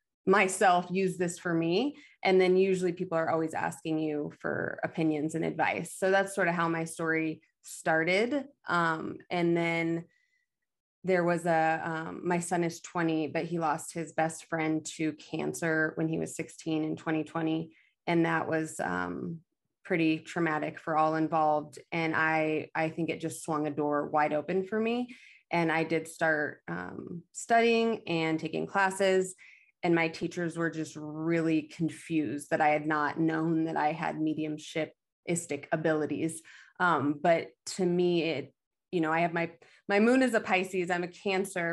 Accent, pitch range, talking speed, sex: American, 160-185 Hz, 165 wpm, female